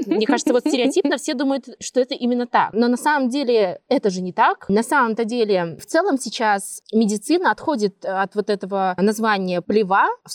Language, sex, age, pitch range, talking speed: Russian, female, 20-39, 200-260 Hz, 185 wpm